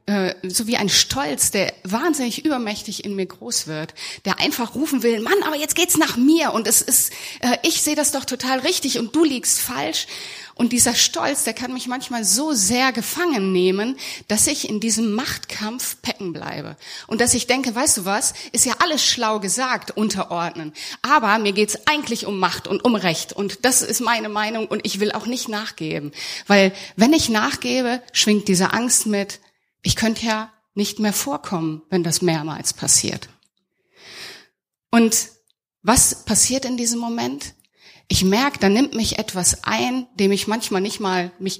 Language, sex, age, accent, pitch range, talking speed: German, female, 30-49, German, 185-245 Hz, 175 wpm